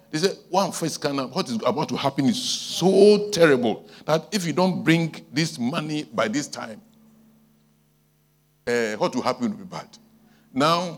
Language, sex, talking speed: English, male, 155 wpm